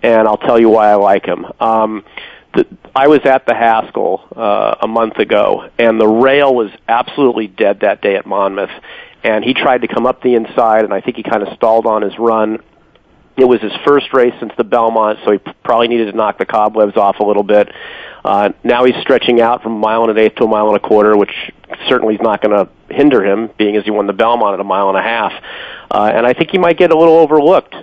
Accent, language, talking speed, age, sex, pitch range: American, English, 250 wpm, 40-59, male, 110-130 Hz